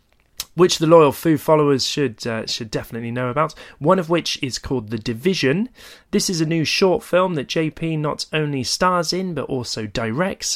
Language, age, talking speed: English, 30-49, 190 wpm